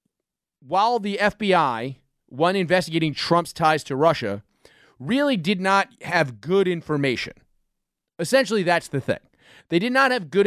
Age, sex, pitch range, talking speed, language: 30-49, male, 155-215 Hz, 140 wpm, English